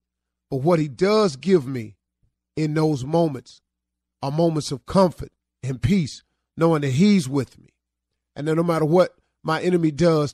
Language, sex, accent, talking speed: English, male, American, 165 wpm